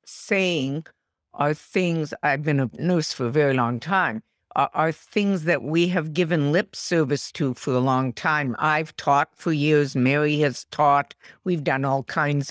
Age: 60-79